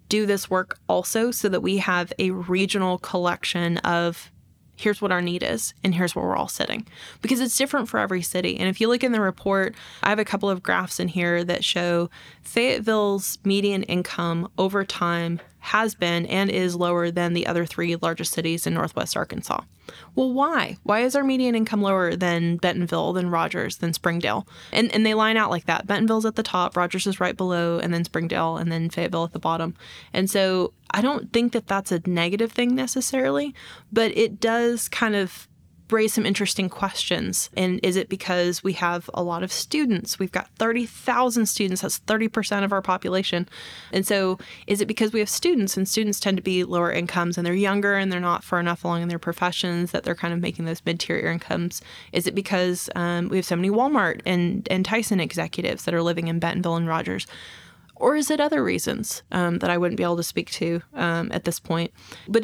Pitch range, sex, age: 175-215 Hz, female, 20-39